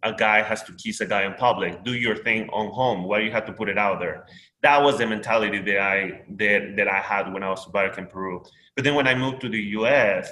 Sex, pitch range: male, 100-120 Hz